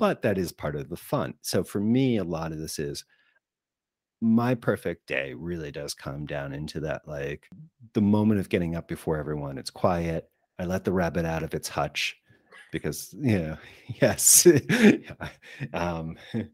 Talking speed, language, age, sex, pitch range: 170 wpm, English, 40-59, male, 80-110 Hz